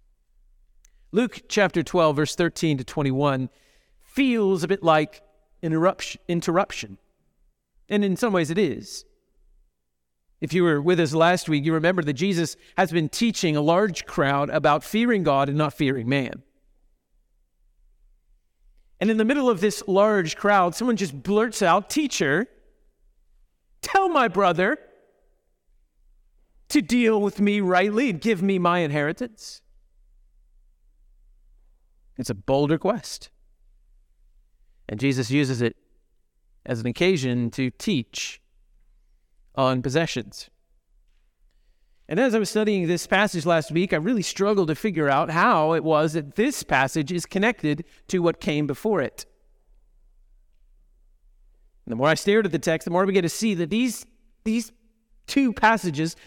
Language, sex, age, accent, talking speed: English, male, 40-59, American, 140 wpm